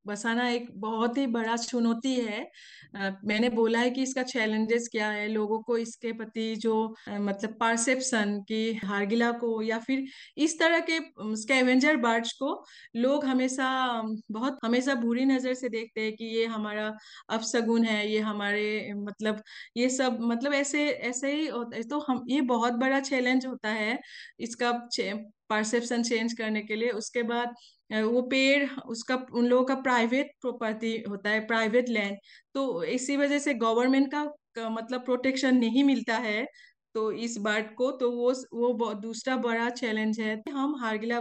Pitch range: 225-270 Hz